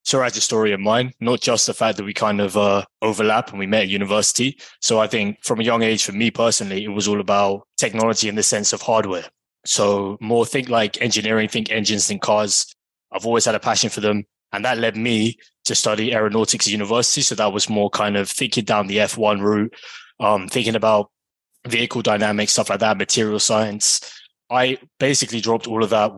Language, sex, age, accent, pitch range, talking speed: English, male, 20-39, British, 105-115 Hz, 215 wpm